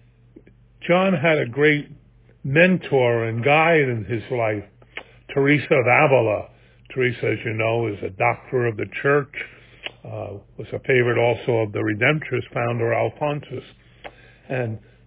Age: 50-69